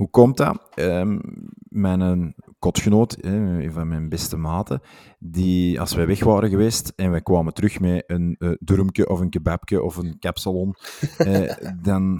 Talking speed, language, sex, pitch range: 170 wpm, Dutch, male, 90-105 Hz